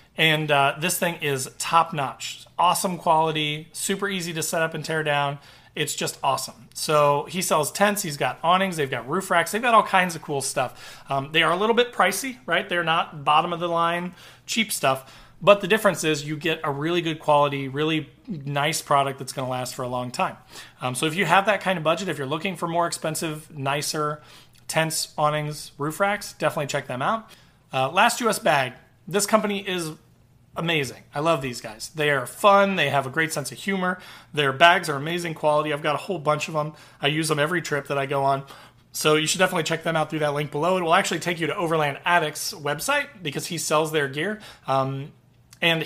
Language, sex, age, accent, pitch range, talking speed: English, male, 30-49, American, 140-175 Hz, 220 wpm